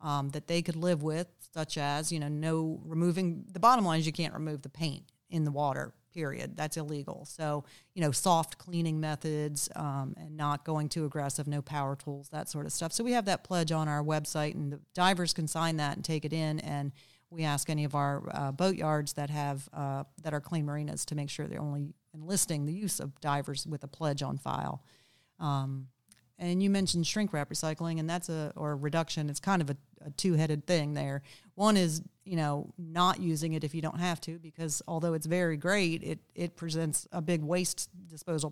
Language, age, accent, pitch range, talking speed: English, 40-59, American, 145-170 Hz, 220 wpm